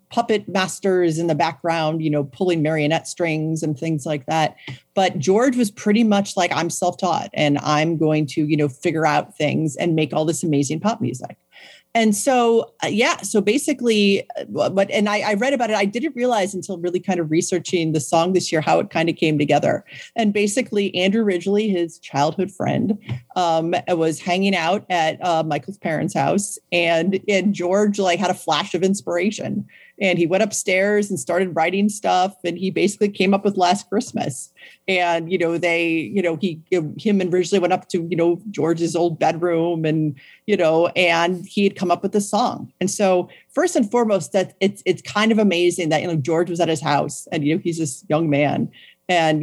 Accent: American